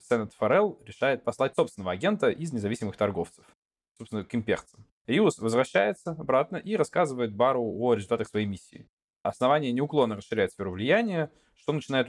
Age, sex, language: 20-39, male, Russian